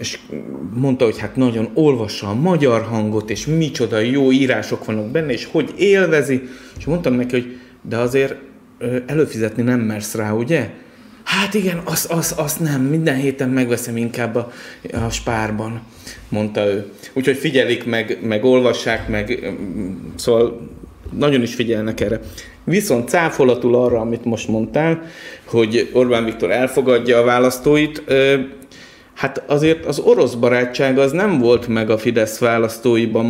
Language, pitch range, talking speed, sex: Hungarian, 115-145 Hz, 140 wpm, male